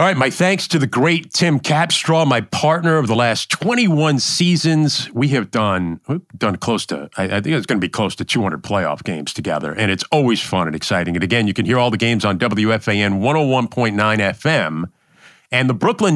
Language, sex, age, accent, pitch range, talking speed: English, male, 40-59, American, 110-160 Hz, 205 wpm